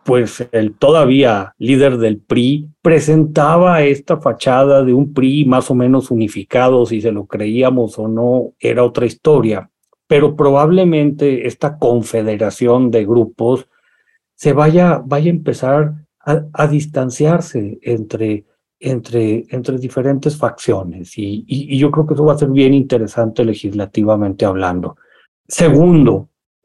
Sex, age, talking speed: male, 40-59, 135 wpm